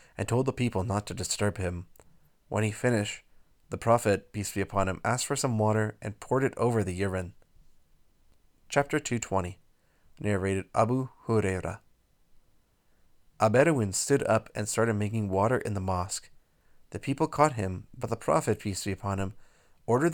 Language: English